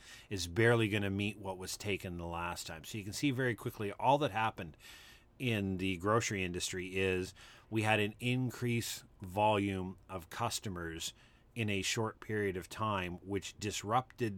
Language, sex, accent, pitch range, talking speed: English, male, American, 95-115 Hz, 165 wpm